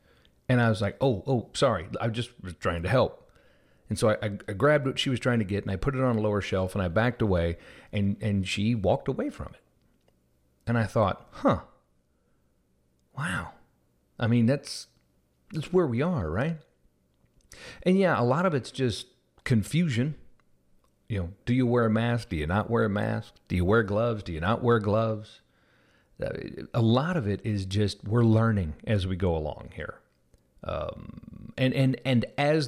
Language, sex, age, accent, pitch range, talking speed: English, male, 40-59, American, 95-125 Hz, 195 wpm